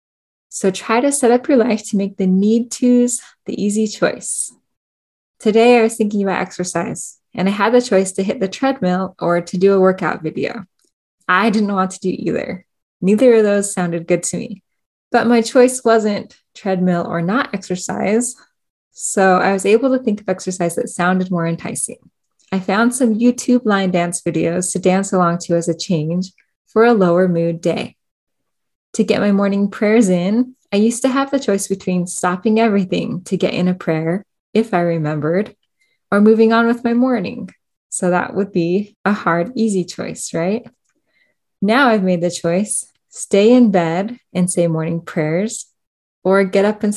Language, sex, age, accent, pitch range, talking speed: English, female, 10-29, American, 180-225 Hz, 180 wpm